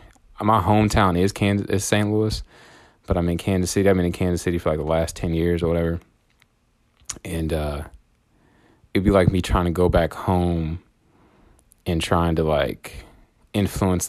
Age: 20-39